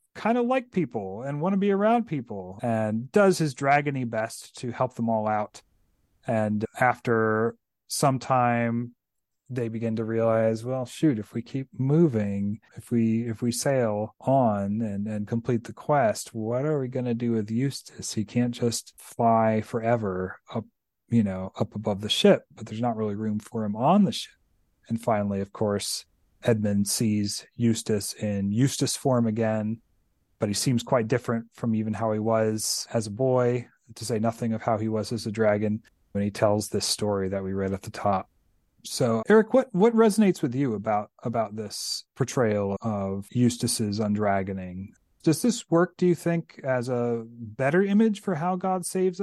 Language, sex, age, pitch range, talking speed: English, male, 30-49, 110-140 Hz, 180 wpm